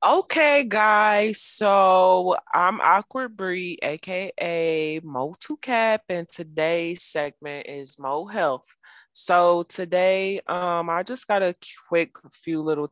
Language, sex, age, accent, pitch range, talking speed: English, female, 20-39, American, 130-160 Hz, 110 wpm